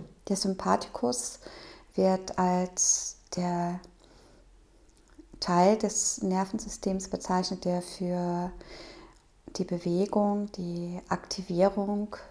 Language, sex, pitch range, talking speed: German, female, 180-205 Hz, 75 wpm